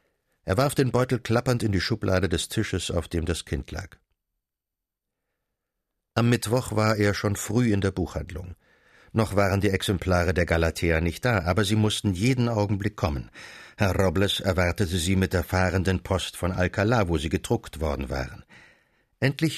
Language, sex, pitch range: German, male, 90-110 Hz